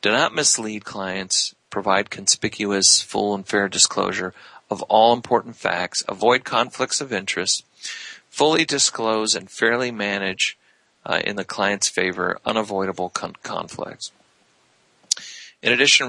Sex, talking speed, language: male, 125 wpm, English